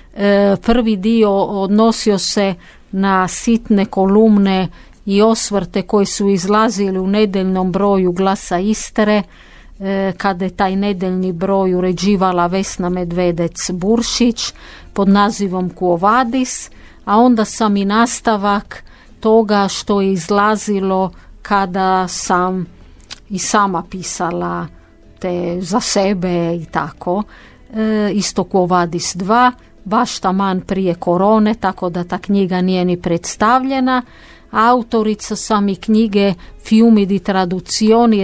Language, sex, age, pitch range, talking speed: Croatian, female, 50-69, 185-215 Hz, 105 wpm